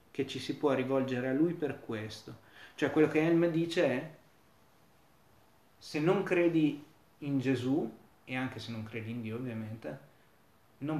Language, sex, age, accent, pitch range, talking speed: Italian, male, 30-49, native, 125-155 Hz, 160 wpm